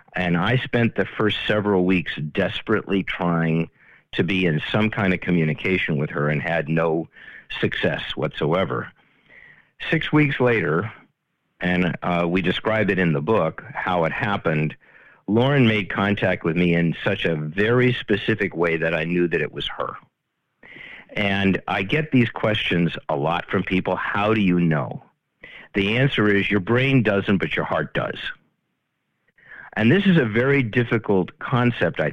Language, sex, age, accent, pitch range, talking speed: English, male, 50-69, American, 85-115 Hz, 160 wpm